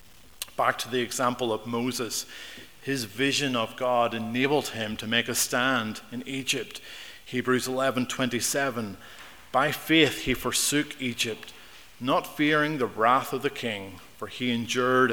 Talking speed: 145 wpm